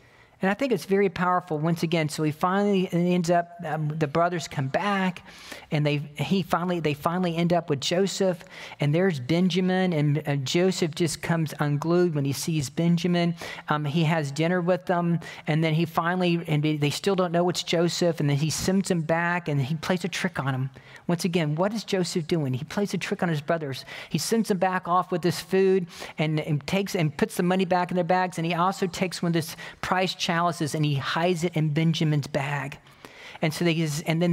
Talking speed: 215 wpm